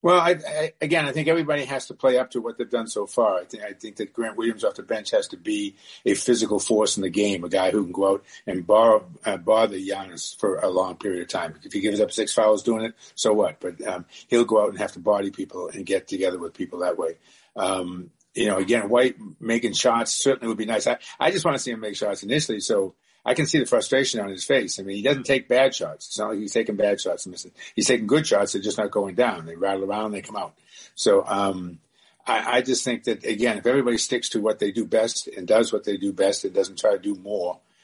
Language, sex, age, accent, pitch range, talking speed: English, male, 50-69, American, 95-130 Hz, 260 wpm